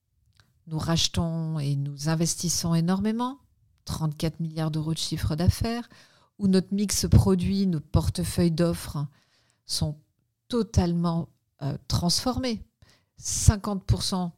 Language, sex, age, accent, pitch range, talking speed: French, female, 50-69, French, 145-190 Hz, 95 wpm